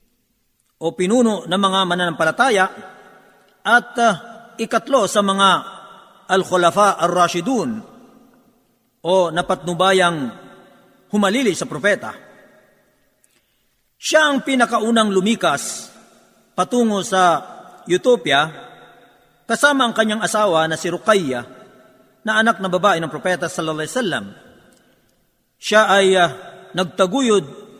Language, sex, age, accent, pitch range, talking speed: Filipino, male, 50-69, native, 180-230 Hz, 90 wpm